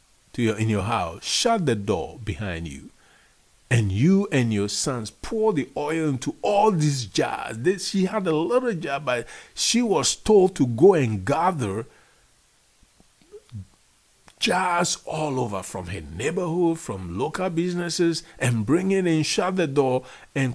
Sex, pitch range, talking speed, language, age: male, 105-160 Hz, 155 wpm, English, 50-69